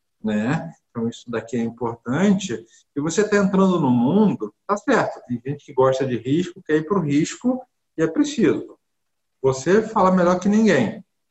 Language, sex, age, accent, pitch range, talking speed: Portuguese, male, 50-69, Brazilian, 130-185 Hz, 175 wpm